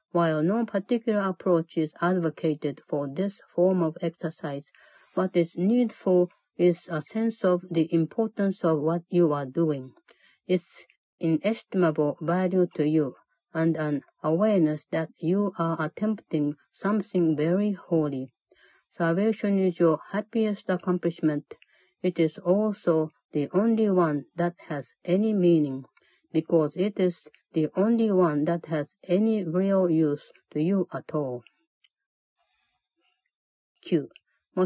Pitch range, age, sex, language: 155-190 Hz, 50-69, female, Japanese